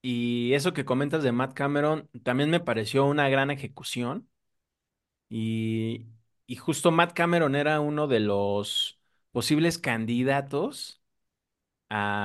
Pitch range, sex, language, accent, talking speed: 115-145 Hz, male, Spanish, Mexican, 125 wpm